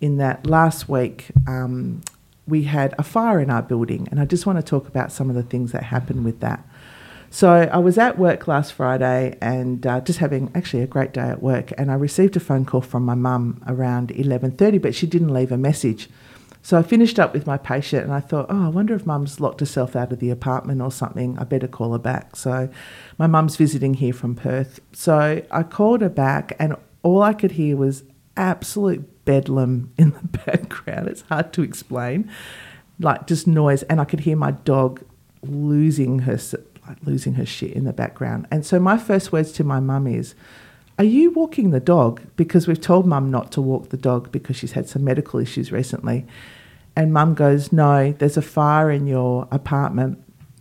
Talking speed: 205 wpm